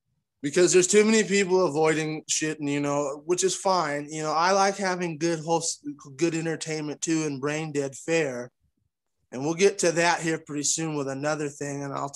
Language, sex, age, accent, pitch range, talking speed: English, male, 20-39, American, 130-150 Hz, 200 wpm